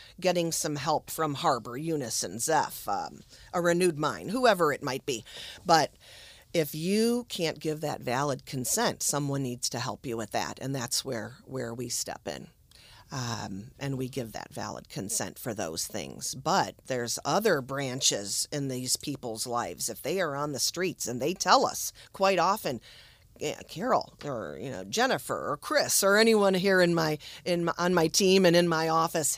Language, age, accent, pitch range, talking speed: English, 40-59, American, 135-175 Hz, 180 wpm